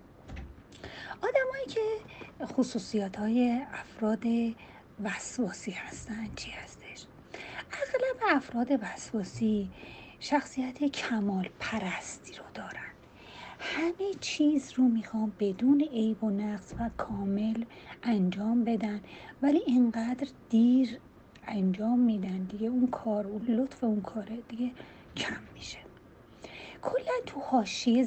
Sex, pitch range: female, 220-290 Hz